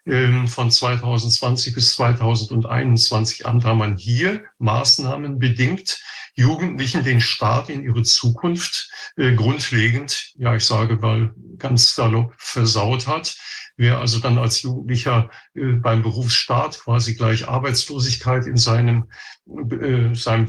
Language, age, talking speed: German, 50-69, 110 wpm